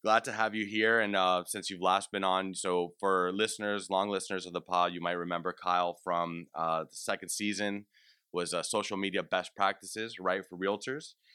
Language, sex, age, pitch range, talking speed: English, male, 30-49, 90-105 Hz, 200 wpm